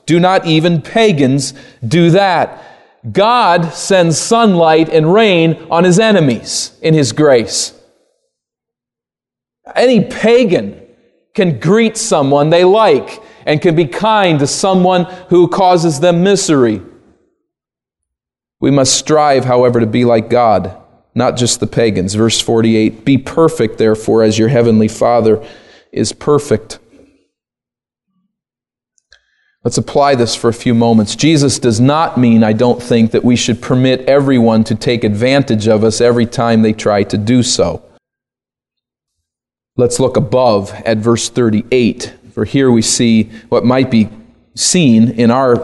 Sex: male